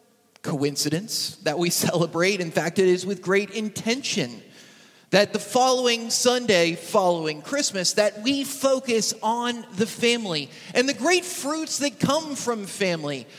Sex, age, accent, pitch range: male, 30-49, American, 185-250 Hz